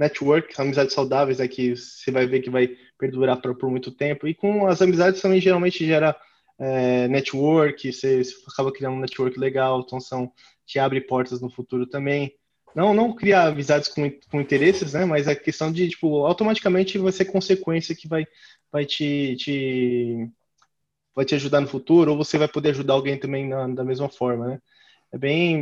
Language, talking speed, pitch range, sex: English, 185 wpm, 130-160 Hz, male